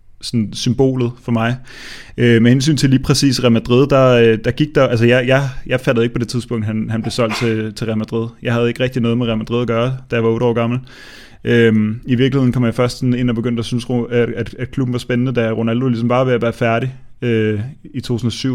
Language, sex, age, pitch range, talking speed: Danish, male, 20-39, 115-130 Hz, 235 wpm